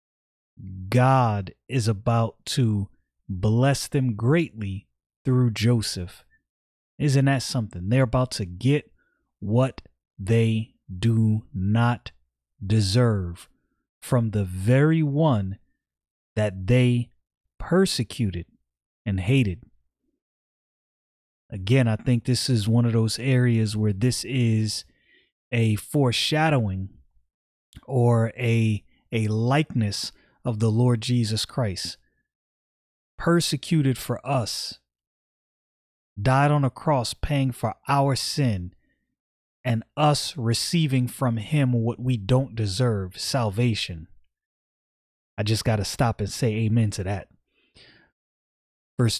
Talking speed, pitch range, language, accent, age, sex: 105 wpm, 100-130 Hz, English, American, 30-49, male